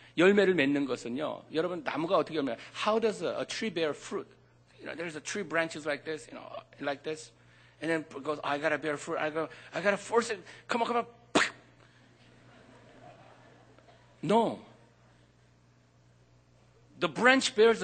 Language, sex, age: Korean, male, 60-79